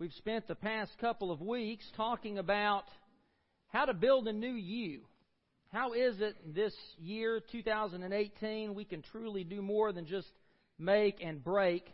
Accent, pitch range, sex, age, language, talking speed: American, 190-245 Hz, male, 40-59, English, 155 wpm